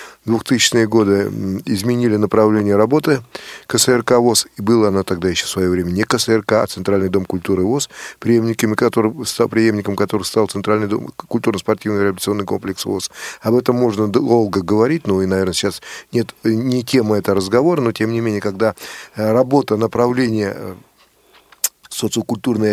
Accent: native